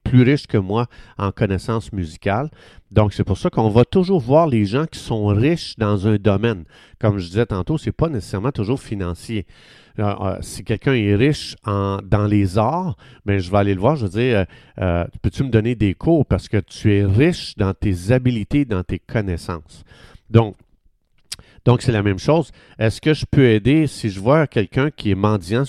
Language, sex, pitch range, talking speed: French, male, 100-130 Hz, 200 wpm